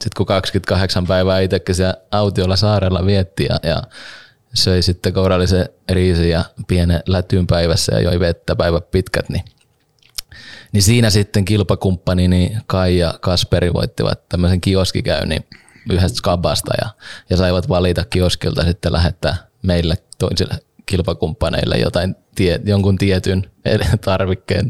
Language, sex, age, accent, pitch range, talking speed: Finnish, male, 20-39, native, 85-105 Hz, 120 wpm